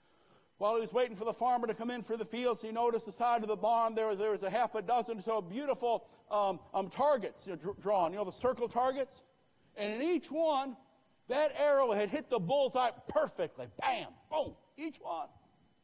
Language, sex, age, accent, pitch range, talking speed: English, male, 60-79, American, 210-300 Hz, 210 wpm